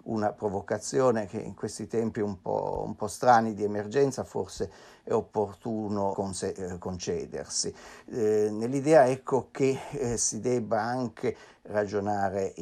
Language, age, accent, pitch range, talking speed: Italian, 50-69, native, 95-115 Hz, 125 wpm